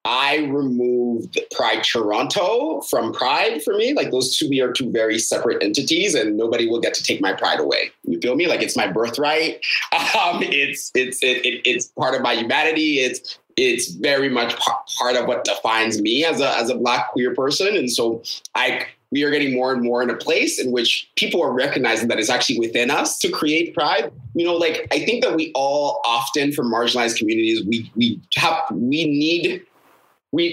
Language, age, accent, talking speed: English, 30-49, American, 200 wpm